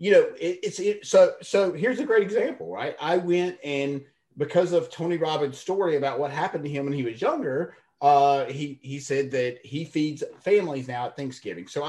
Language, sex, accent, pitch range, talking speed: English, male, American, 140-200 Hz, 205 wpm